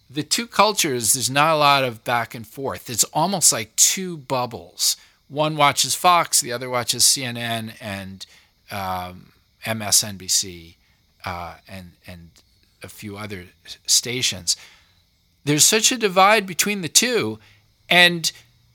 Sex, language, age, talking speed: male, English, 50-69, 130 wpm